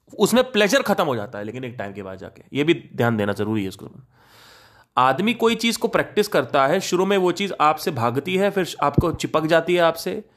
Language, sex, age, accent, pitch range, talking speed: Hindi, male, 30-49, native, 130-180 Hz, 225 wpm